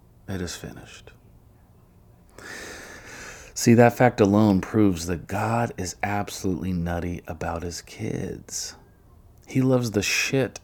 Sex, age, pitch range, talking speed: male, 40-59, 85-105 Hz, 115 wpm